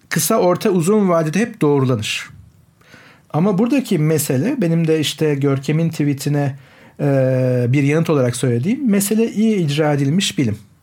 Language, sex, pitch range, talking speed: Turkish, male, 135-185 Hz, 135 wpm